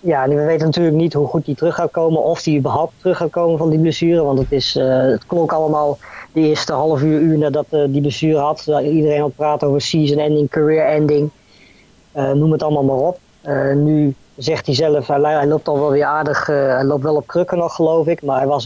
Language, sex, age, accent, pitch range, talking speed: Dutch, female, 20-39, Dutch, 140-155 Hz, 240 wpm